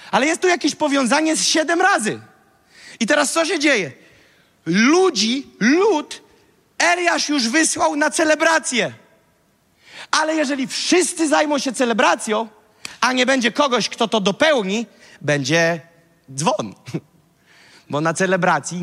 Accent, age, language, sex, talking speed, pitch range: native, 40-59, Polish, male, 120 wpm, 205-300 Hz